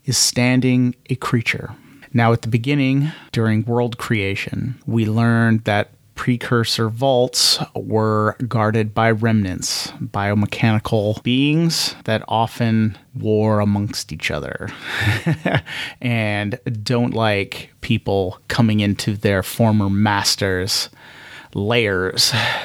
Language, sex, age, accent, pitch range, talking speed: English, male, 30-49, American, 105-125 Hz, 100 wpm